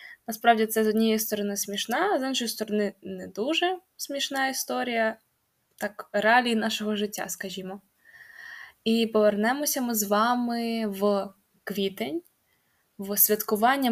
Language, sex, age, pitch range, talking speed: Ukrainian, female, 10-29, 210-255 Hz, 120 wpm